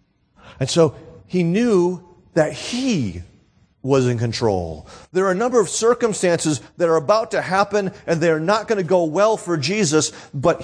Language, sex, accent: English, male, American